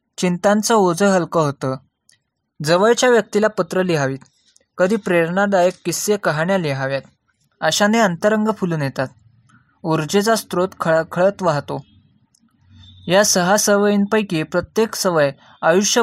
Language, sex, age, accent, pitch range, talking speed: Marathi, male, 20-39, native, 160-210 Hz, 105 wpm